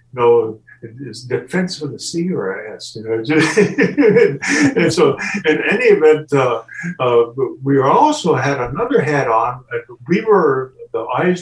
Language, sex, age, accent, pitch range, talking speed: English, male, 60-79, American, 120-175 Hz, 145 wpm